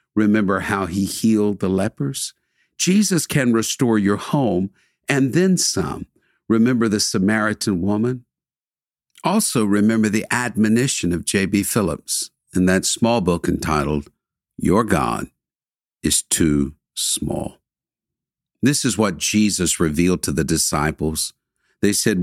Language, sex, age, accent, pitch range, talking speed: English, male, 60-79, American, 95-140 Hz, 120 wpm